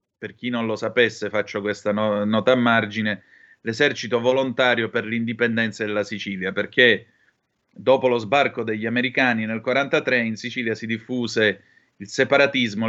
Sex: male